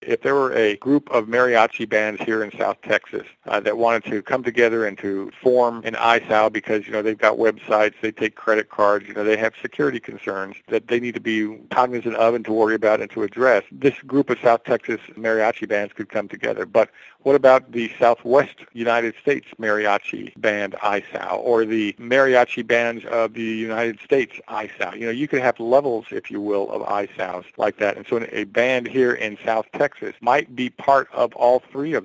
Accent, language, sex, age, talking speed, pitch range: American, English, male, 50-69, 210 wpm, 110-125 Hz